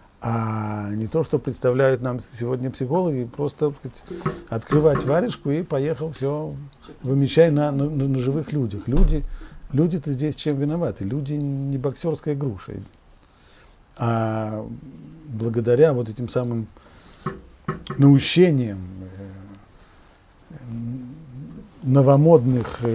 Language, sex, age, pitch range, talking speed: Russian, male, 50-69, 100-150 Hz, 95 wpm